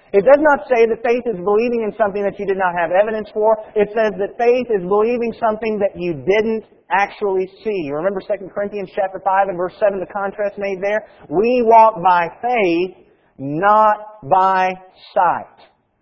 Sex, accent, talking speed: male, American, 180 wpm